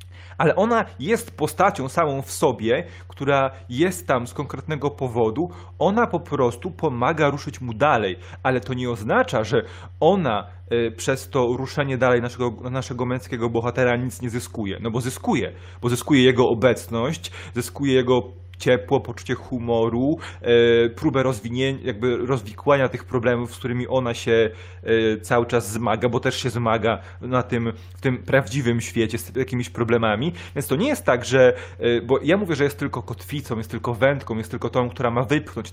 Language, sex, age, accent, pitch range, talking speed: Polish, male, 30-49, native, 115-135 Hz, 160 wpm